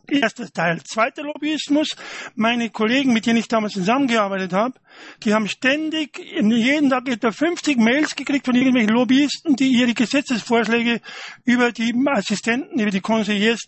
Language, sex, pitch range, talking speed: German, male, 215-270 Hz, 145 wpm